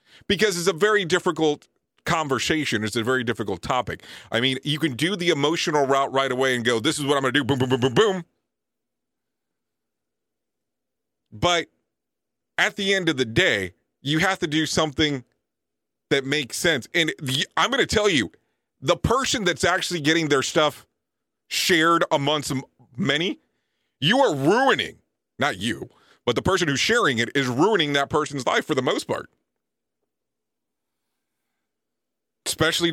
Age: 40-59